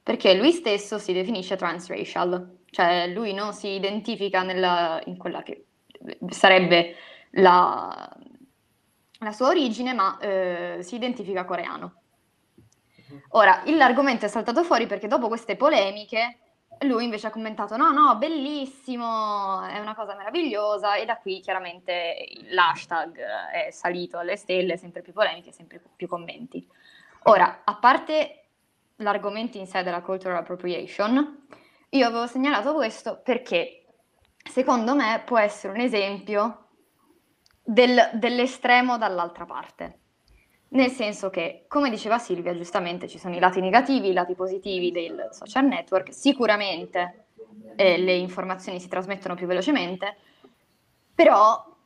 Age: 20-39